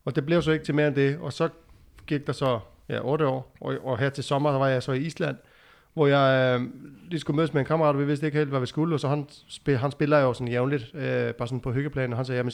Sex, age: male, 30-49